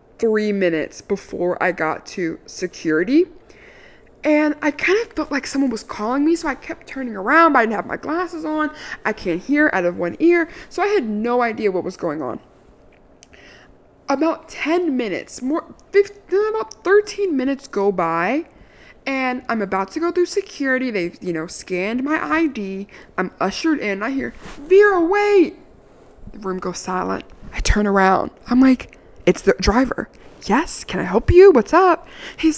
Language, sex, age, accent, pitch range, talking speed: English, female, 20-39, American, 215-330 Hz, 175 wpm